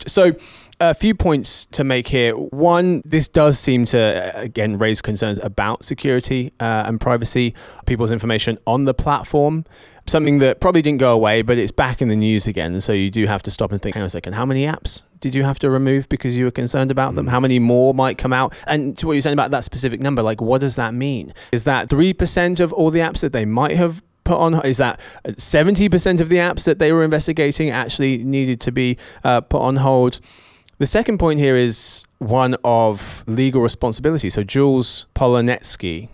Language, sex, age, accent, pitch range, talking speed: English, male, 20-39, British, 110-140 Hz, 215 wpm